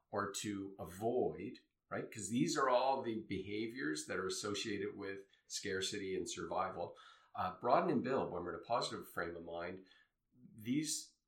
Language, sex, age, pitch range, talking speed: English, male, 50-69, 95-120 Hz, 160 wpm